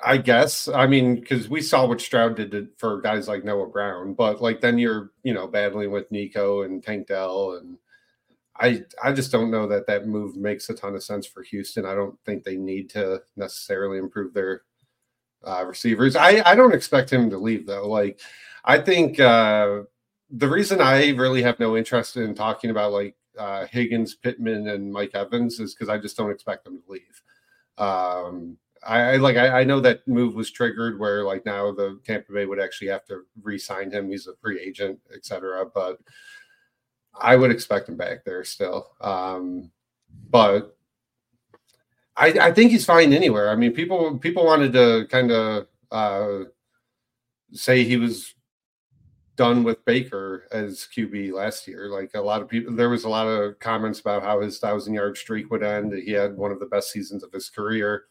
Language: English